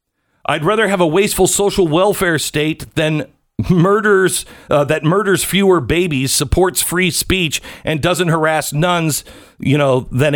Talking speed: 145 wpm